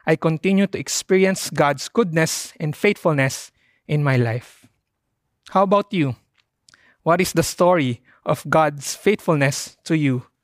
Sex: male